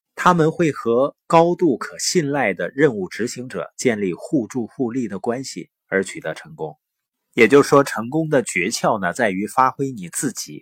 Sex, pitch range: male, 115-165 Hz